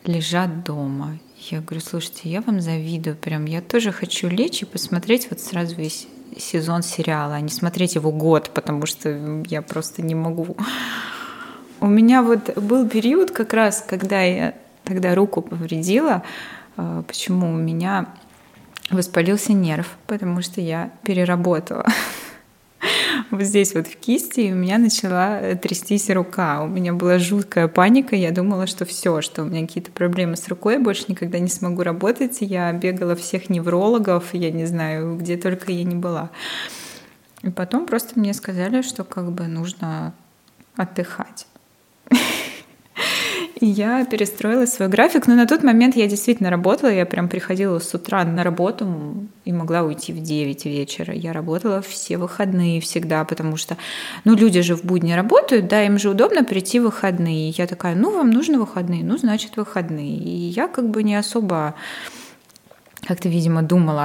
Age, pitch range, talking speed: 20-39, 170-210 Hz, 160 wpm